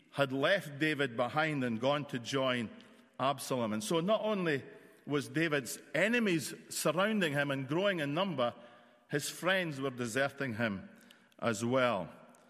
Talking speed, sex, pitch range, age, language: 140 wpm, male, 115-150 Hz, 50-69, English